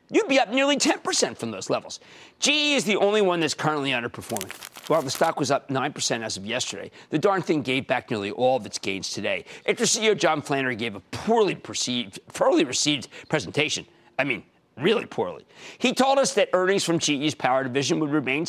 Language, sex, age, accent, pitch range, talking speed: English, male, 50-69, American, 135-215 Hz, 200 wpm